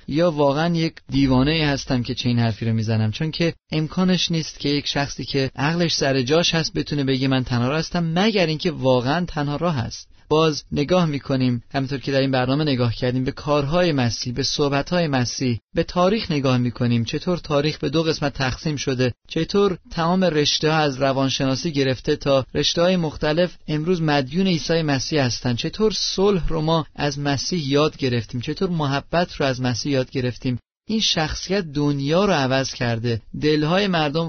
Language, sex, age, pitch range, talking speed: Persian, male, 30-49, 130-165 Hz, 180 wpm